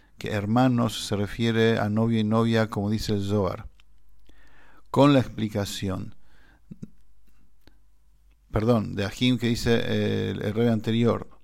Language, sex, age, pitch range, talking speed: English, male, 50-69, 105-120 Hz, 125 wpm